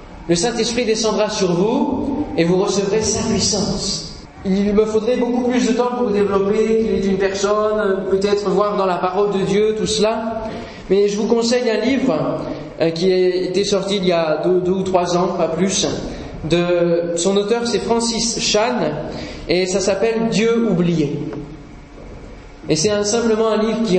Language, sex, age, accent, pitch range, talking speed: French, male, 20-39, French, 180-220 Hz, 180 wpm